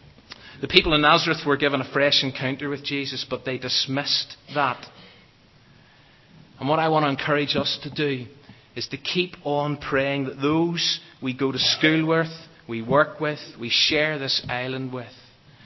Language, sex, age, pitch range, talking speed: English, male, 30-49, 125-150 Hz, 170 wpm